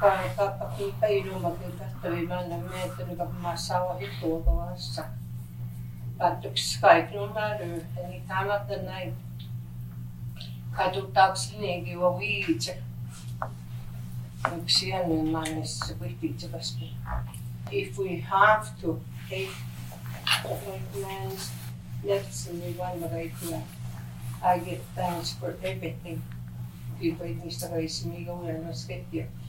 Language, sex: English, female